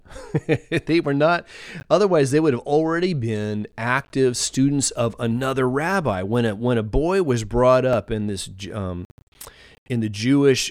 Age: 30-49